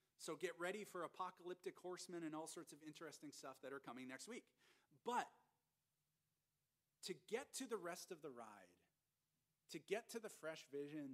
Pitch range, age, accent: 130-165 Hz, 40-59, American